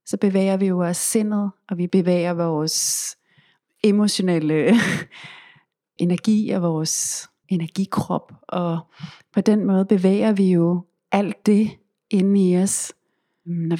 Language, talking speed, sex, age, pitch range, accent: Danish, 120 wpm, female, 30-49, 165-200 Hz, native